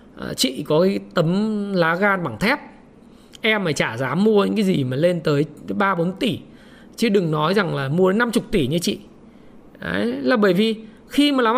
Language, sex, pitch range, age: Vietnamese, male, 190-245 Hz, 20-39